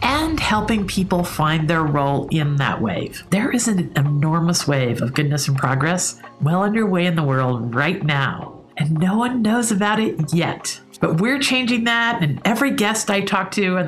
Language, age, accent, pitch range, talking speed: English, 50-69, American, 155-215 Hz, 185 wpm